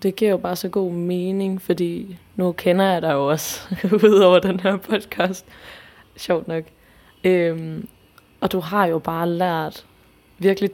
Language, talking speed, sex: Danish, 150 wpm, female